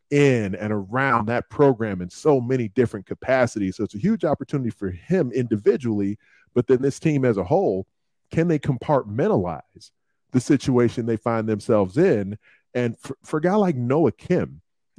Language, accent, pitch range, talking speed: English, American, 115-140 Hz, 170 wpm